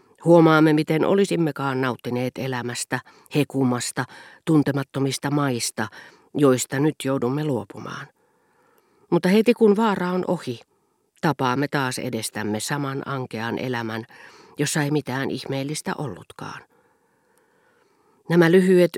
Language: Finnish